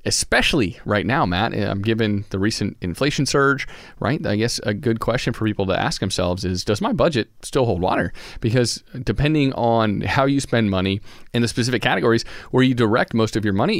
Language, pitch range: English, 100-140 Hz